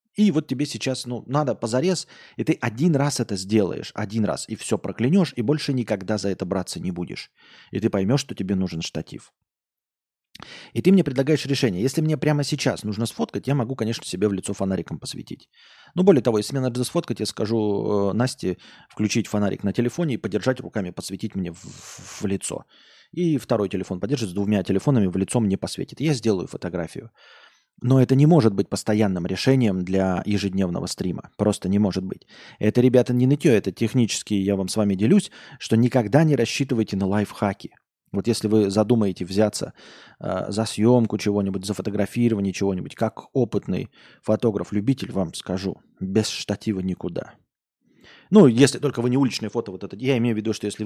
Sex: male